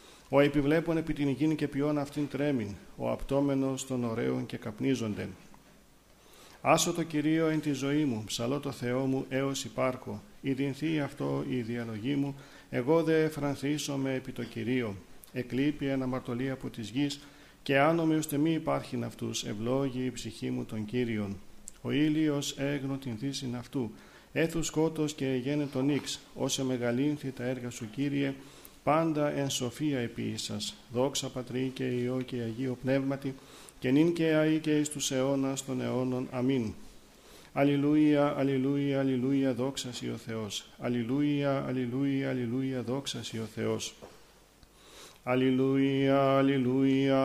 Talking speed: 145 wpm